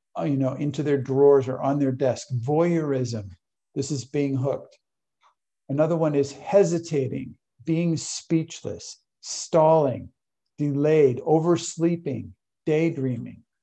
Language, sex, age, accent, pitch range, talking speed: English, male, 50-69, American, 130-160 Hz, 105 wpm